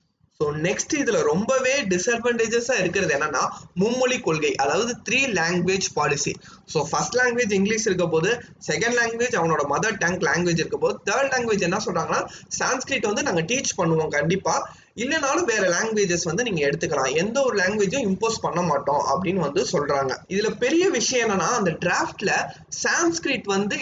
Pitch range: 175-260 Hz